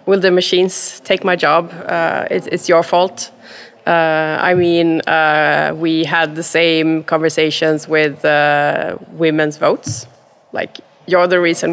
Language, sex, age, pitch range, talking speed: Romanian, female, 20-39, 165-195 Hz, 145 wpm